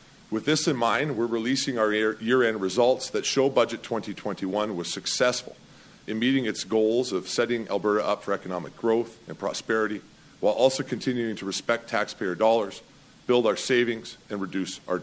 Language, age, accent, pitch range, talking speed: English, 40-59, American, 100-120 Hz, 165 wpm